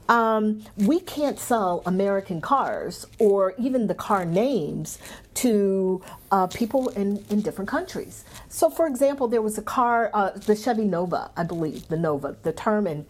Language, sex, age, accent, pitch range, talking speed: English, female, 50-69, American, 175-245 Hz, 165 wpm